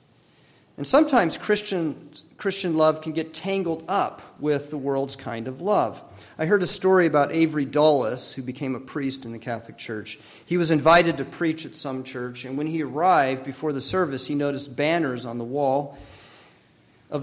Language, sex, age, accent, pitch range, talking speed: English, male, 40-59, American, 125-160 Hz, 180 wpm